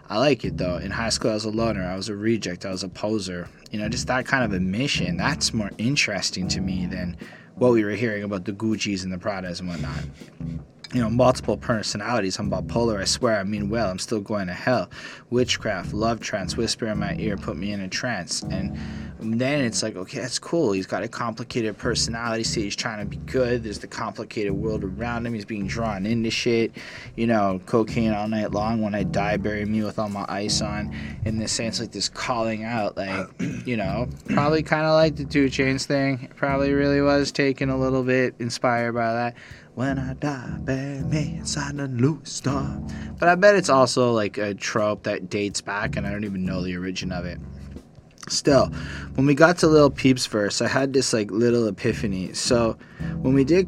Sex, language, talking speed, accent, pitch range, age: male, English, 215 wpm, American, 105-135 Hz, 20-39